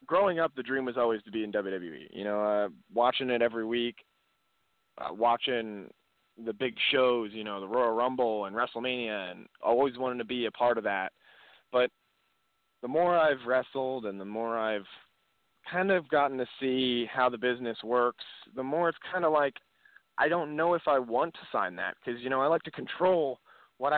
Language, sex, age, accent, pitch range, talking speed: English, male, 20-39, American, 115-140 Hz, 200 wpm